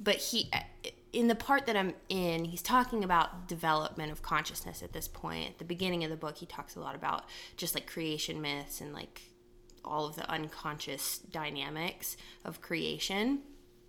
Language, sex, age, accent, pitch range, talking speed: English, female, 20-39, American, 120-190 Hz, 175 wpm